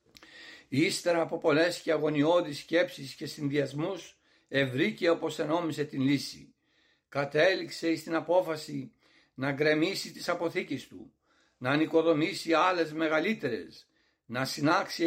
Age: 60-79